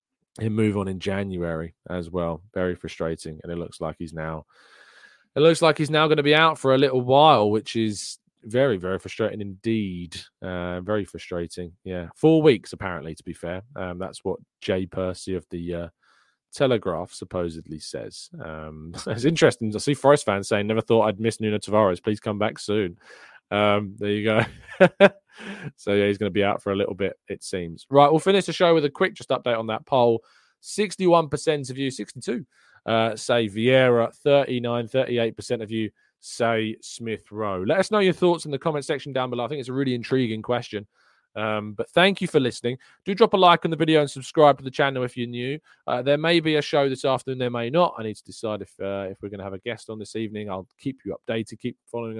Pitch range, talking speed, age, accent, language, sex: 100-135 Hz, 215 wpm, 20-39, British, English, male